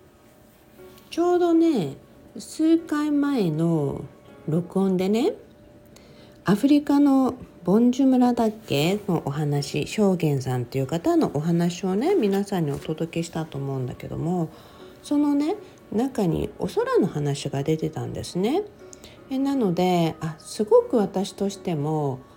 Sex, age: female, 50-69